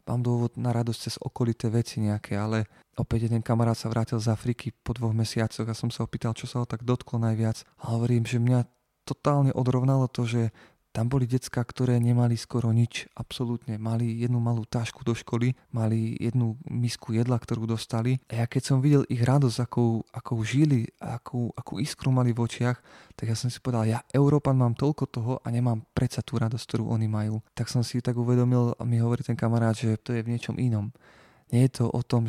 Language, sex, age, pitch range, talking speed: Slovak, male, 20-39, 115-130 Hz, 205 wpm